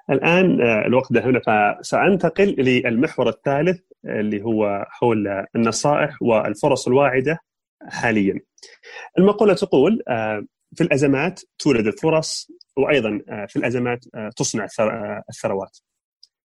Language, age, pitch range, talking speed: Arabic, 30-49, 120-185 Hz, 90 wpm